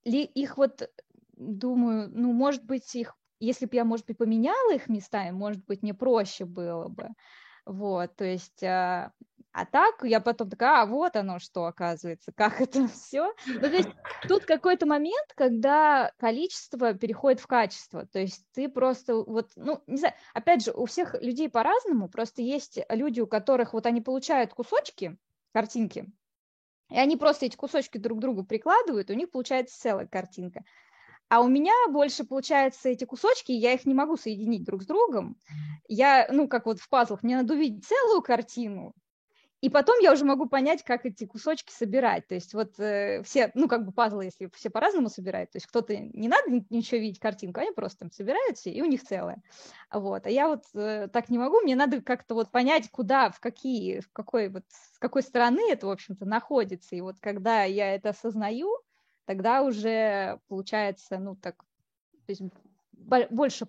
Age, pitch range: 20-39, 210-270 Hz